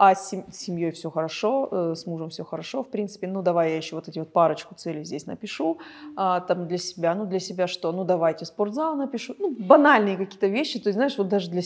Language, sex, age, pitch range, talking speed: Russian, female, 20-39, 175-205 Hz, 220 wpm